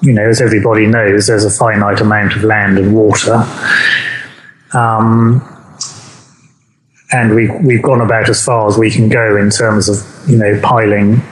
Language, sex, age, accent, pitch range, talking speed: English, male, 30-49, British, 110-135 Hz, 165 wpm